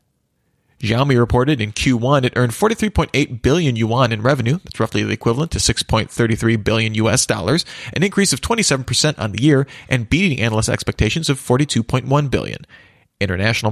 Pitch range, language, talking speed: 115-150 Hz, English, 155 wpm